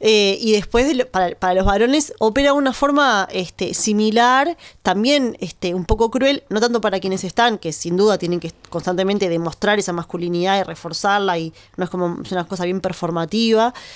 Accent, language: Argentinian, Spanish